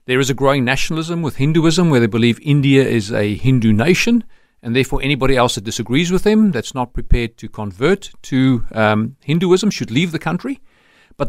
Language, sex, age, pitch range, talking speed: English, male, 40-59, 120-175 Hz, 190 wpm